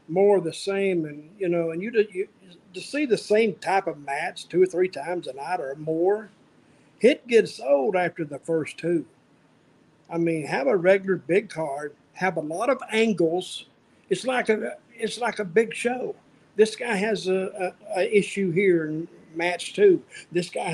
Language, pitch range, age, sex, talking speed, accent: English, 170-205 Hz, 50-69, male, 190 wpm, American